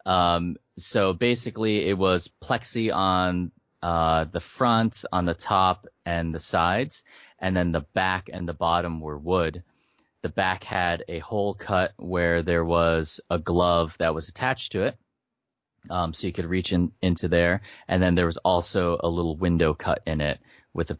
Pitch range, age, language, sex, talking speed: 85-95 Hz, 30-49, English, male, 175 wpm